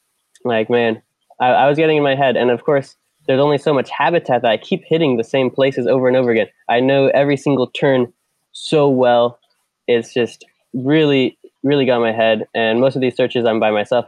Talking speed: 215 wpm